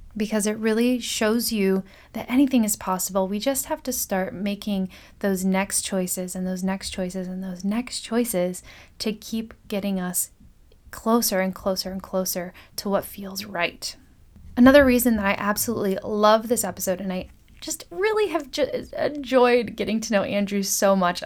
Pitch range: 185-225 Hz